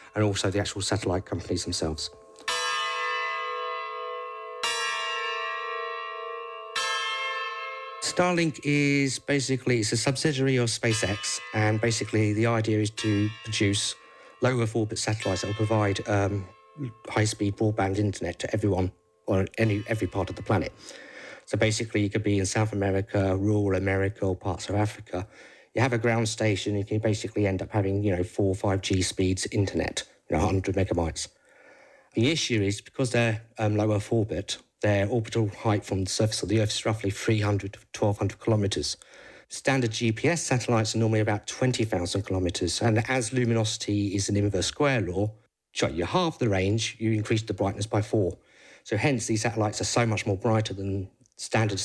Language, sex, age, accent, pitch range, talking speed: English, male, 50-69, British, 95-115 Hz, 160 wpm